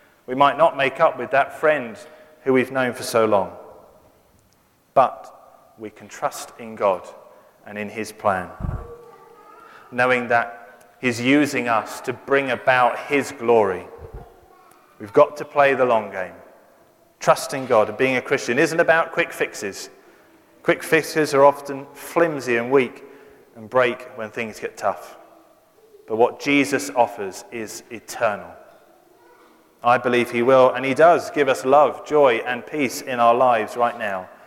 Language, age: English, 30-49